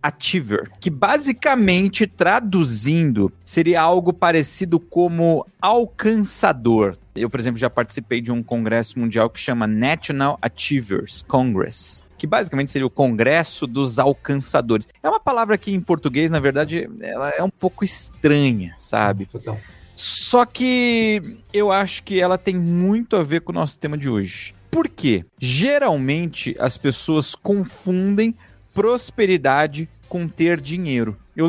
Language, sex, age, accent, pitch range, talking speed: Portuguese, male, 40-59, Brazilian, 115-185 Hz, 135 wpm